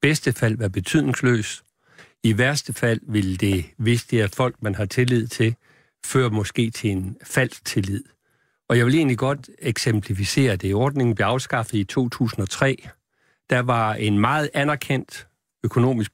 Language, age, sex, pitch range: Danish, 60-79, male, 110-135 Hz